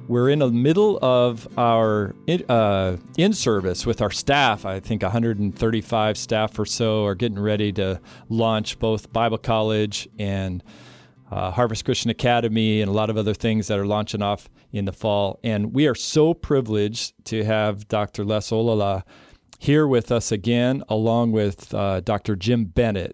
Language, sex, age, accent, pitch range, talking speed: English, male, 40-59, American, 105-125 Hz, 165 wpm